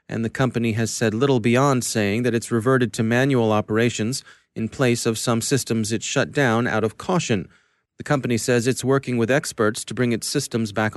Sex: male